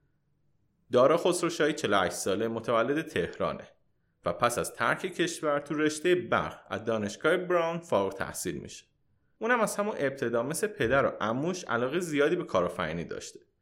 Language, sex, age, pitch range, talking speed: Persian, male, 30-49, 120-180 Hz, 155 wpm